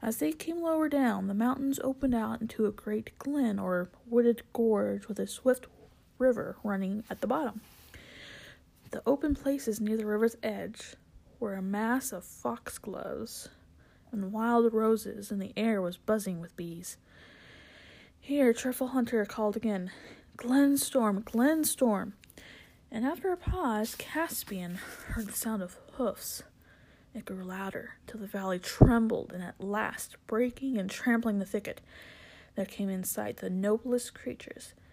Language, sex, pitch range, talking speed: English, female, 195-235 Hz, 145 wpm